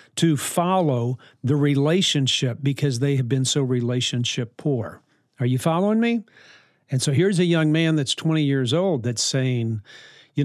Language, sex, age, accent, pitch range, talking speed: English, male, 50-69, American, 125-160 Hz, 160 wpm